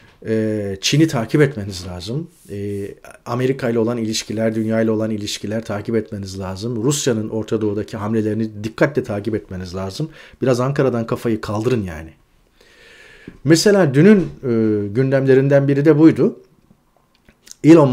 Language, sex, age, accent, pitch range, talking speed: Turkish, male, 40-59, native, 110-145 Hz, 115 wpm